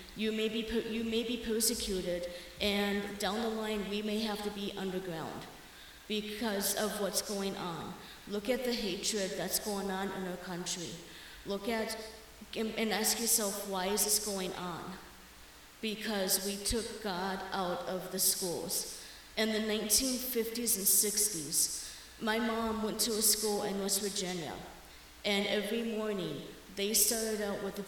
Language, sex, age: English, female, 30-49